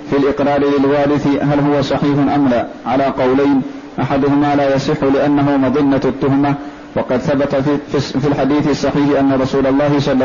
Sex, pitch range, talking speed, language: male, 135-145 Hz, 150 wpm, Arabic